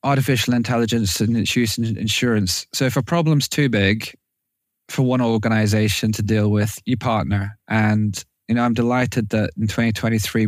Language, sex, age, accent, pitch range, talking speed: English, male, 20-39, British, 105-120 Hz, 165 wpm